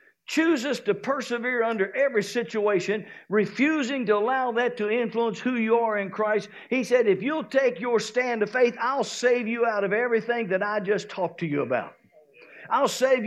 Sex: male